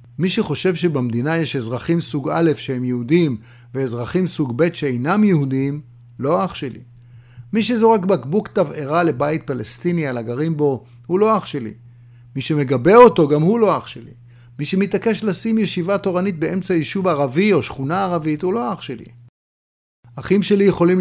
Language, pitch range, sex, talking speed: Hebrew, 120-170 Hz, male, 160 wpm